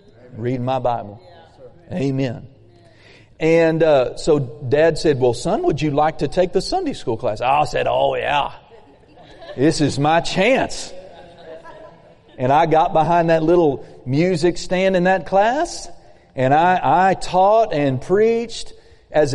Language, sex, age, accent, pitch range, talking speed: English, male, 40-59, American, 155-210 Hz, 145 wpm